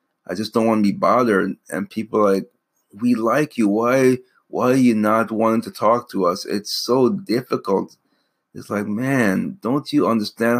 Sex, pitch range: male, 100-115 Hz